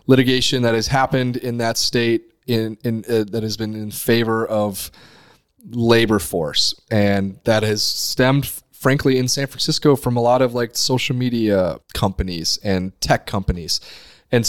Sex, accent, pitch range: male, American, 100-125 Hz